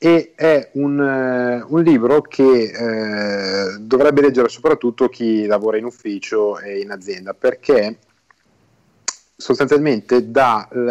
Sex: male